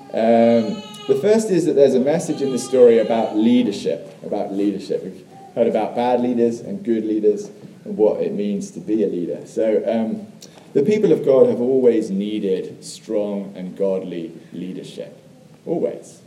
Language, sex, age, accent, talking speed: English, male, 30-49, British, 165 wpm